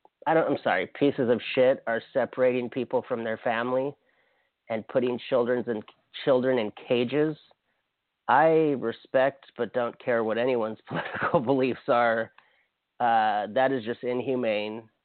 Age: 30-49